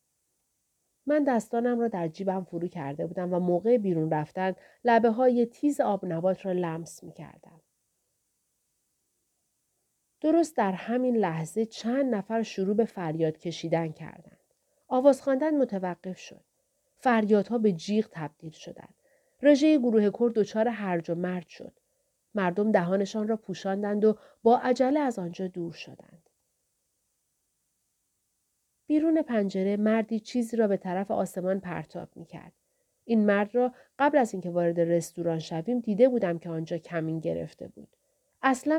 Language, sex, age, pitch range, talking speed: Persian, female, 40-59, 180-235 Hz, 135 wpm